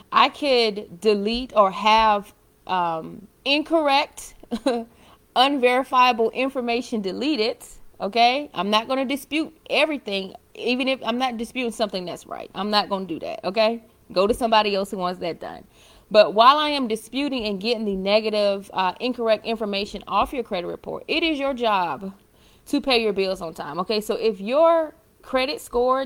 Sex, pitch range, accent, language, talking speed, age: female, 195-255 Hz, American, English, 160 wpm, 30-49